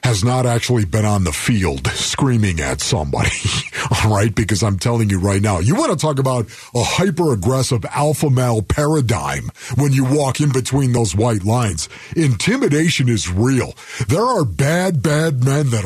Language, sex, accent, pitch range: English, male, American, 105-150 Hz